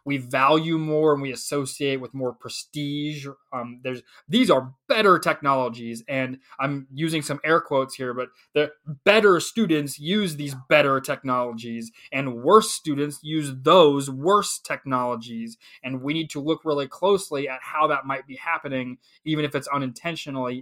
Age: 20-39